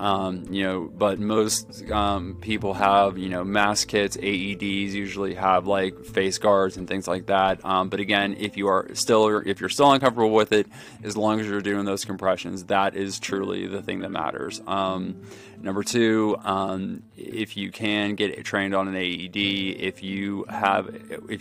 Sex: male